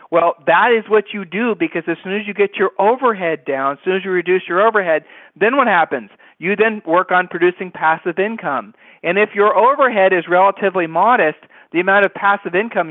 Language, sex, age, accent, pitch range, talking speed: English, male, 40-59, American, 155-205 Hz, 205 wpm